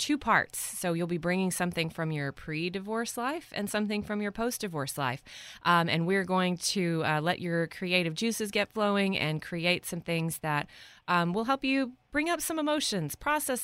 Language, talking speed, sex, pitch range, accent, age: English, 190 wpm, female, 160-205 Hz, American, 30-49